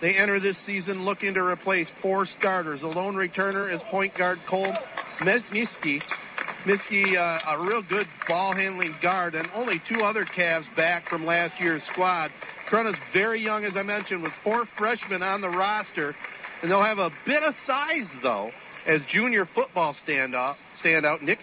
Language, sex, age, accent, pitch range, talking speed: English, male, 50-69, American, 170-210 Hz, 165 wpm